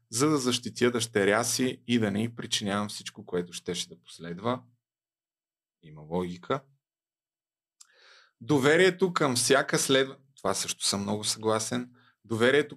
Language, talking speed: Bulgarian, 125 wpm